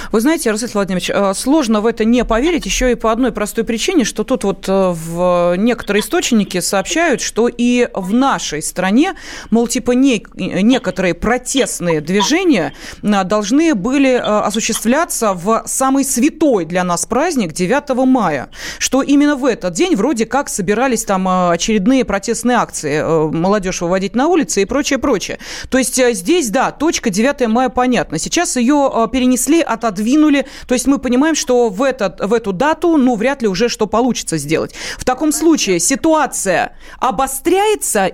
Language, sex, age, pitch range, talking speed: Russian, female, 30-49, 205-275 Hz, 150 wpm